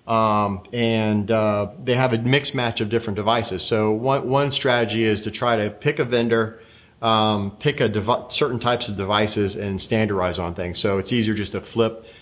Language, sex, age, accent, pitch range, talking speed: English, male, 40-59, American, 100-120 Hz, 195 wpm